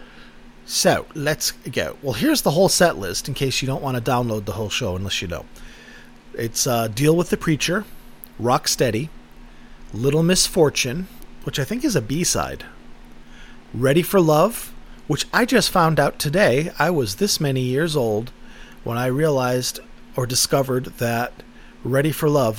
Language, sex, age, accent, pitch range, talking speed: English, male, 30-49, American, 110-175 Hz, 165 wpm